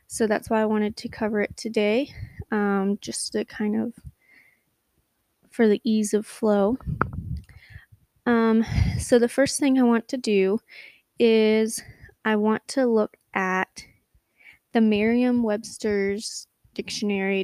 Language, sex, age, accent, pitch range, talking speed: English, female, 20-39, American, 210-240 Hz, 125 wpm